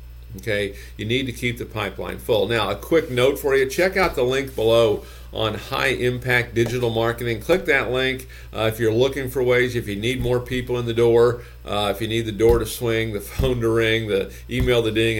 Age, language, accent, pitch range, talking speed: 50-69, English, American, 95-135 Hz, 225 wpm